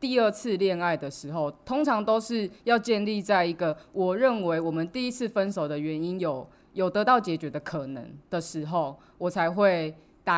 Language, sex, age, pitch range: Chinese, female, 20-39, 150-195 Hz